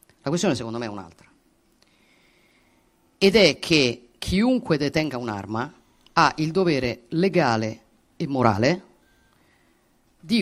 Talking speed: 110 wpm